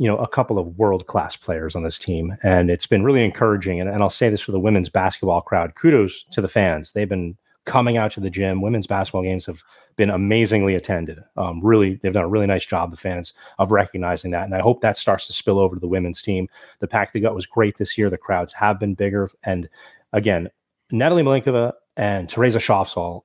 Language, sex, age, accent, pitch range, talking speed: English, male, 30-49, American, 95-110 Hz, 225 wpm